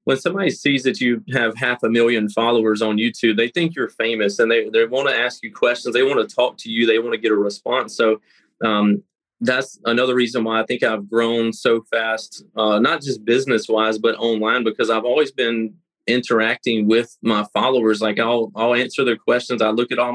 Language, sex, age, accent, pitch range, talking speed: English, male, 30-49, American, 110-125 Hz, 215 wpm